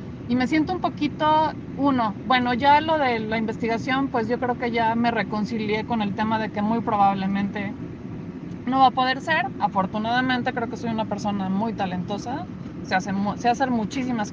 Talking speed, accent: 185 wpm, Mexican